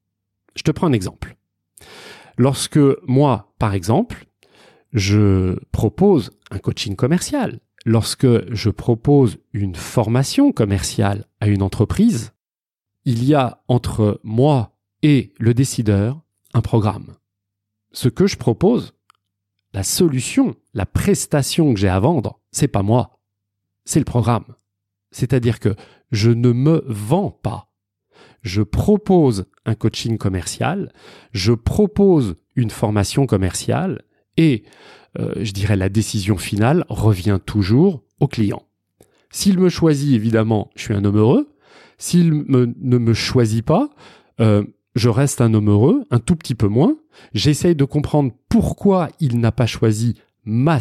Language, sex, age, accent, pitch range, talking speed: French, male, 30-49, French, 105-140 Hz, 135 wpm